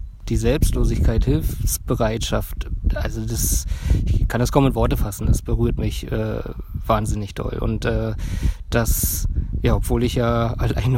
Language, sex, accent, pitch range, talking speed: German, male, German, 90-120 Hz, 140 wpm